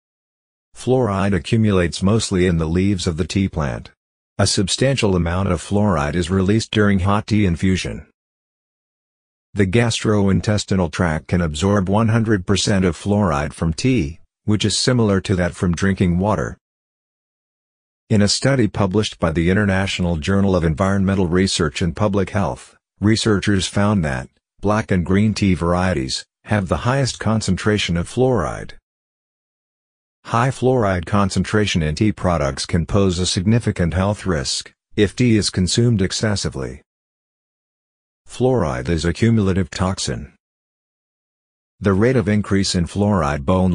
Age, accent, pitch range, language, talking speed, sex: 50-69, American, 90-105 Hz, English, 130 wpm, male